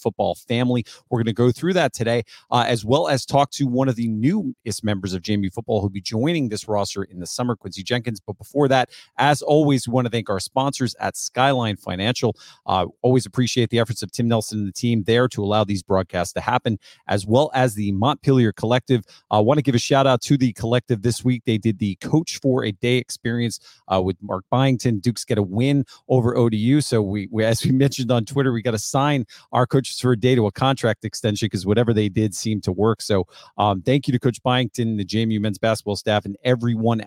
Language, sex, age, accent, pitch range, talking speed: English, male, 30-49, American, 105-130 Hz, 235 wpm